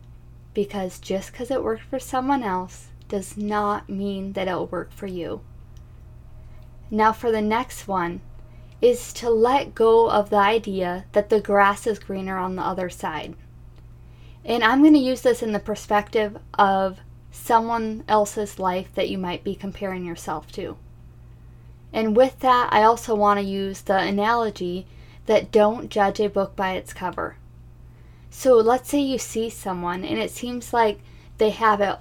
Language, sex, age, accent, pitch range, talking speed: English, female, 10-29, American, 175-225 Hz, 165 wpm